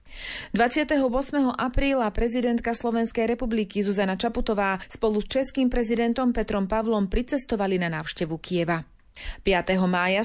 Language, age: Slovak, 30-49